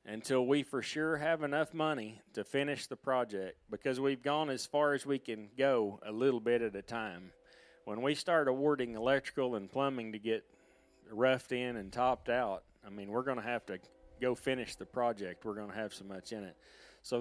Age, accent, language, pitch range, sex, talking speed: 40-59, American, English, 105-140 Hz, male, 210 wpm